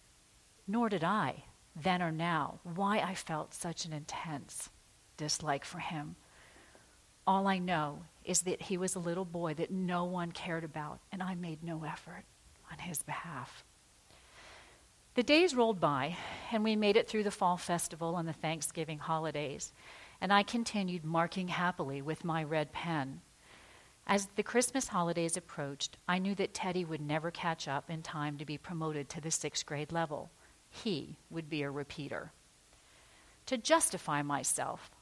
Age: 50-69